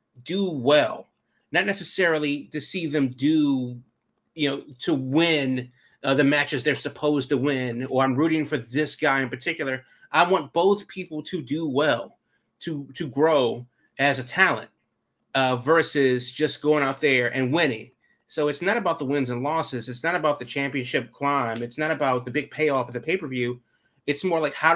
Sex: male